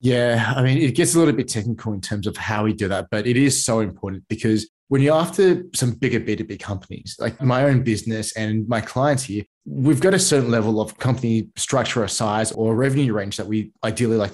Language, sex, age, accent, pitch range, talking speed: English, male, 20-39, Australian, 110-130 Hz, 225 wpm